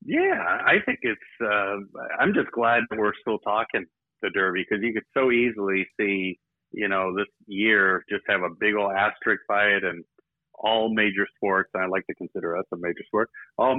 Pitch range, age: 95-115 Hz, 50-69